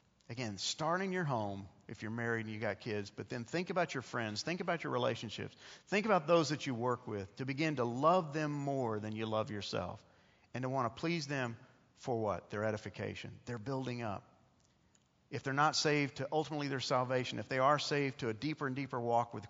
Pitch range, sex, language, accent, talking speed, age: 115-160 Hz, male, English, American, 220 wpm, 50-69